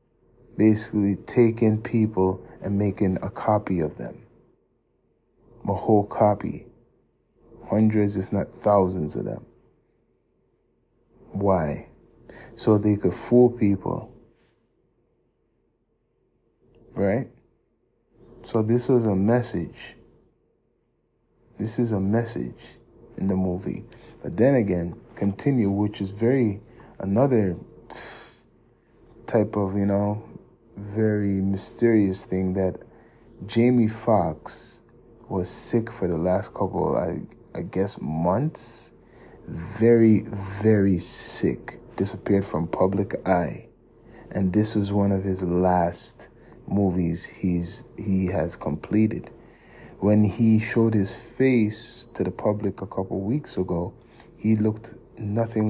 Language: English